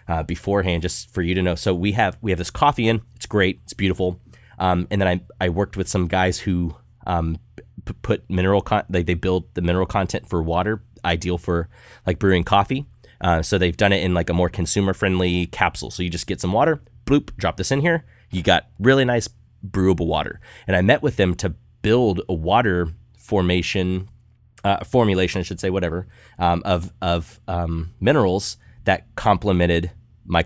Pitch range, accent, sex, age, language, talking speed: 90-110 Hz, American, male, 30-49, English, 195 wpm